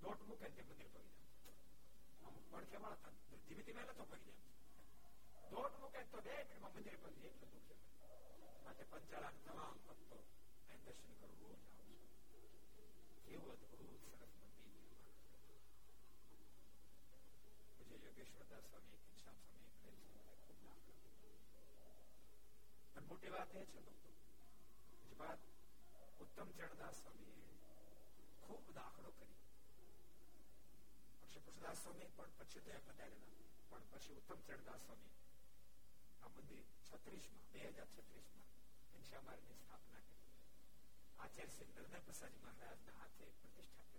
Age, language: 60-79, Gujarati